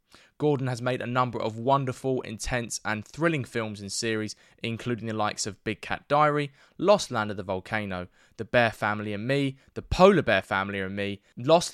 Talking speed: 190 wpm